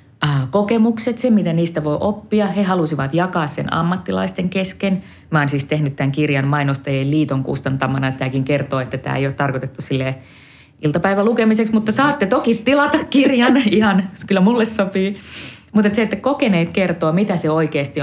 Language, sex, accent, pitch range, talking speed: Finnish, female, native, 130-175 Hz, 165 wpm